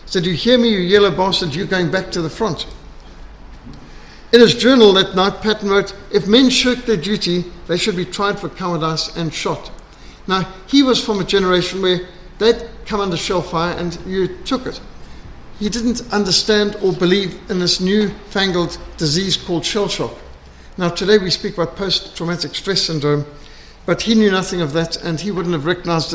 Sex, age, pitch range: male, 60-79, 170-205 Hz